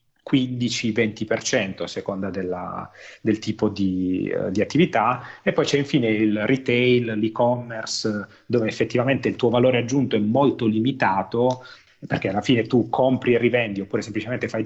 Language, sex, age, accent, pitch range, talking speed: Italian, male, 30-49, native, 105-130 Hz, 135 wpm